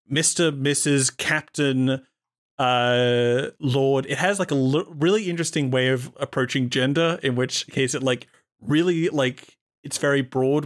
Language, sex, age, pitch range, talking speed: English, male, 30-49, 120-155 Hz, 140 wpm